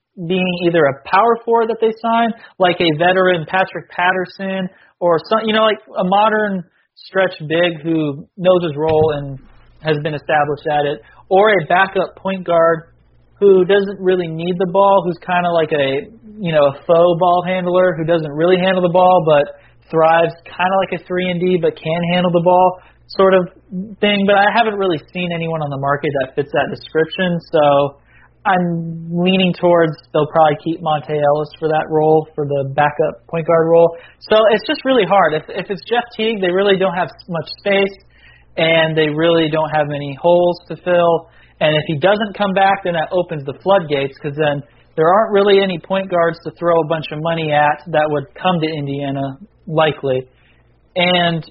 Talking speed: 190 wpm